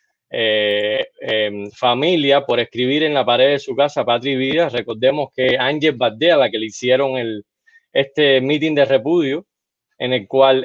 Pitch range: 125-170 Hz